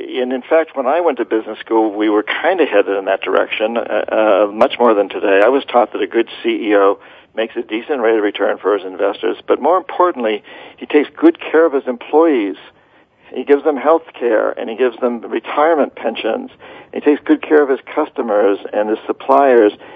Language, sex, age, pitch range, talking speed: English, male, 60-79, 110-155 Hz, 210 wpm